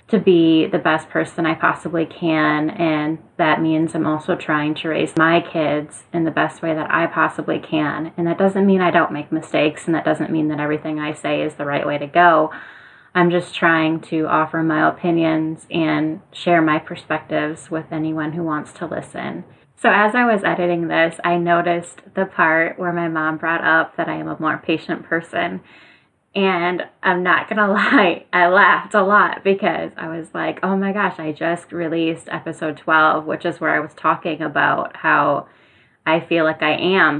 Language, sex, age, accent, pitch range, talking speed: English, female, 10-29, American, 155-170 Hz, 195 wpm